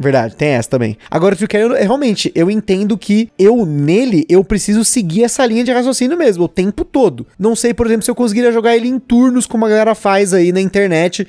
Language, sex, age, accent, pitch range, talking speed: Portuguese, male, 20-39, Brazilian, 185-250 Hz, 220 wpm